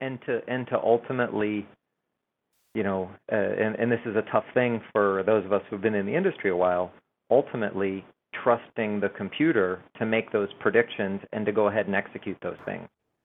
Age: 40-59